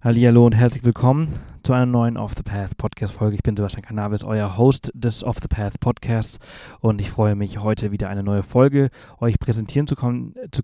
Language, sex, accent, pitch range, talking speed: German, male, German, 105-120 Hz, 165 wpm